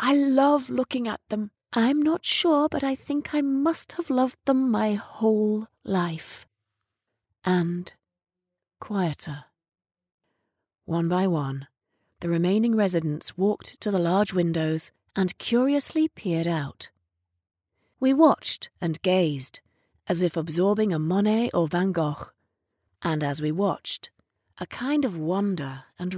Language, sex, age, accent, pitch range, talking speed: English, female, 30-49, British, 150-220 Hz, 130 wpm